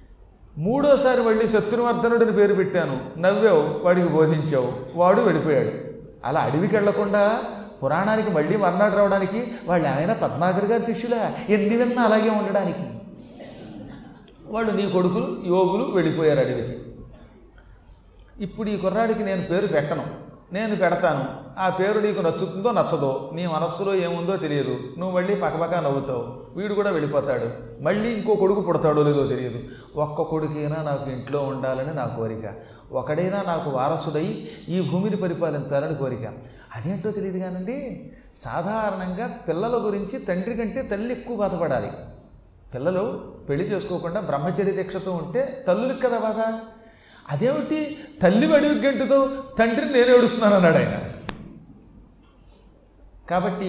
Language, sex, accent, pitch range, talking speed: Telugu, male, native, 150-215 Hz, 120 wpm